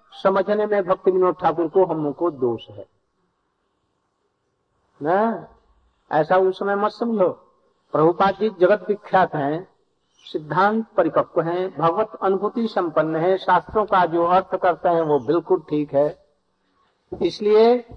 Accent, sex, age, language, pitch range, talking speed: native, male, 60-79, Hindi, 155-210 Hz, 125 wpm